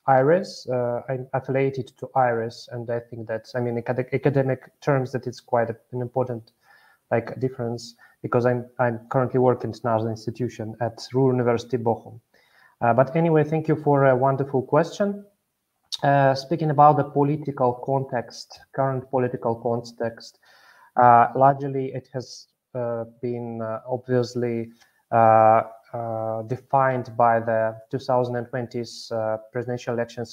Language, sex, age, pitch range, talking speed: Swedish, male, 30-49, 115-130 Hz, 140 wpm